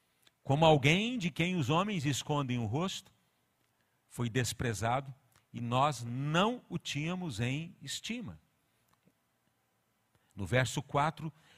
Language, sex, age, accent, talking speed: Portuguese, male, 50-69, Brazilian, 110 wpm